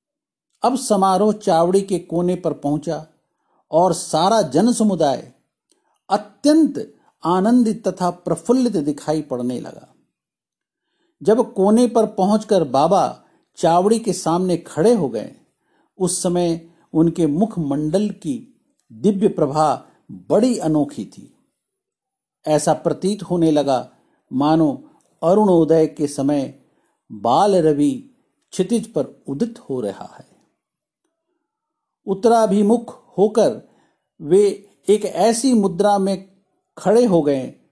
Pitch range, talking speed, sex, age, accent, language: 160-220 Hz, 105 wpm, male, 50-69, native, Hindi